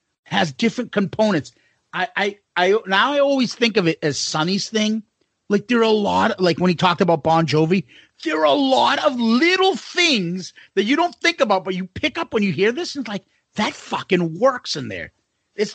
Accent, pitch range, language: American, 185-255 Hz, English